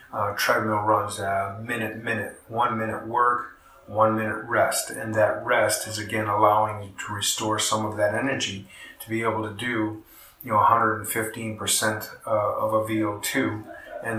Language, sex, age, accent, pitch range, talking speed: English, male, 40-59, American, 105-115 Hz, 165 wpm